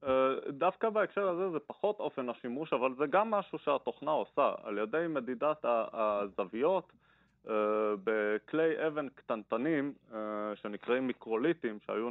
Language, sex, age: Hebrew, male, 30-49